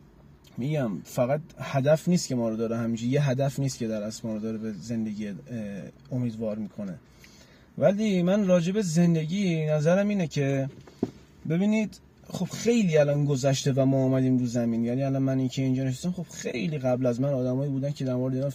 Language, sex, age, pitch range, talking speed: Persian, male, 30-49, 125-155 Hz, 180 wpm